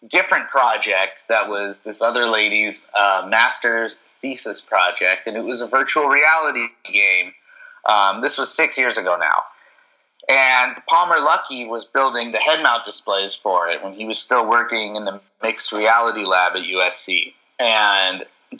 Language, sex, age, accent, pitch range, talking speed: English, male, 30-49, American, 110-130 Hz, 160 wpm